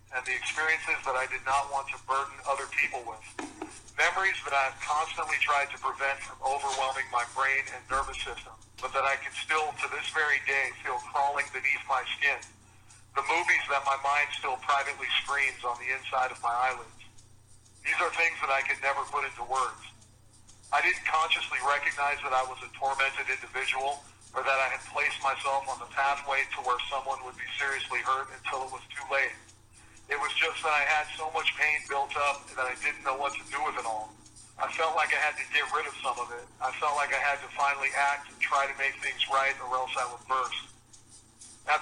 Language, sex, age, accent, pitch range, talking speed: English, male, 40-59, American, 125-140 Hz, 215 wpm